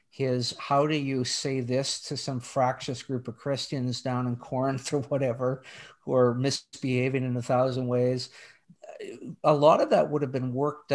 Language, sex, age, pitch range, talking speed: English, male, 50-69, 125-140 Hz, 175 wpm